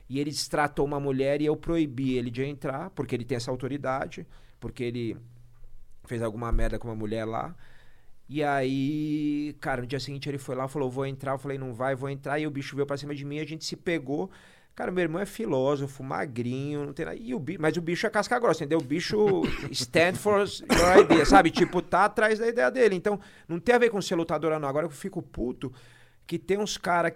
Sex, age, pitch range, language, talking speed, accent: male, 40-59, 120-150 Hz, Portuguese, 230 wpm, Brazilian